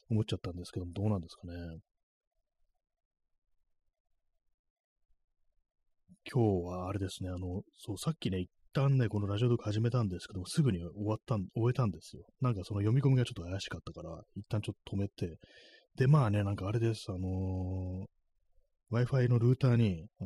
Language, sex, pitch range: Japanese, male, 90-110 Hz